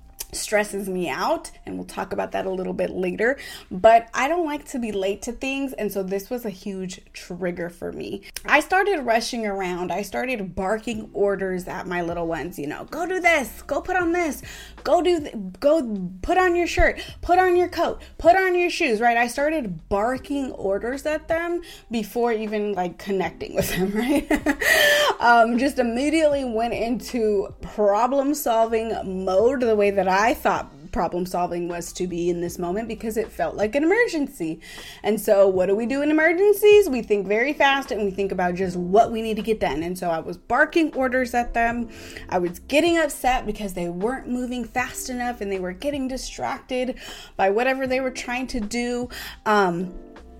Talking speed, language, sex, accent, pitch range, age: 190 wpm, English, female, American, 195-280 Hz, 20-39